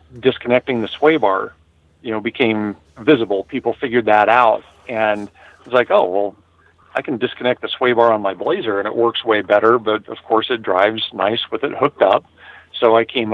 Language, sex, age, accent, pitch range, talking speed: English, male, 40-59, American, 105-115 Hz, 200 wpm